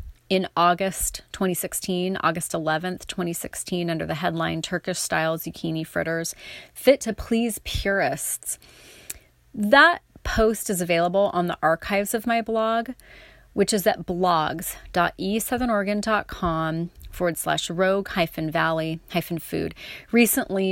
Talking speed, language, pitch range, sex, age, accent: 115 wpm, English, 160-190 Hz, female, 30-49, American